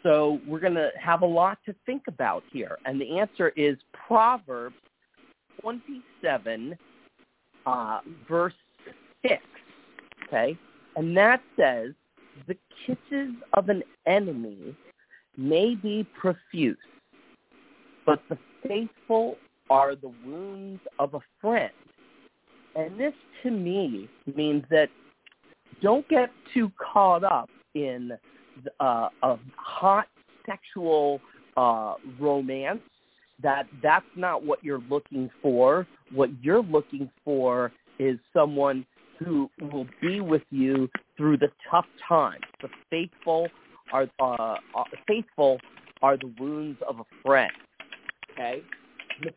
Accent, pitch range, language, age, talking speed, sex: American, 140-210 Hz, English, 40-59, 115 wpm, male